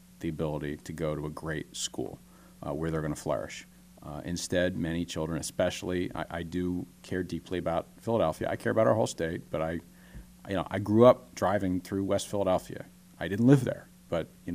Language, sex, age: English, male, 40-59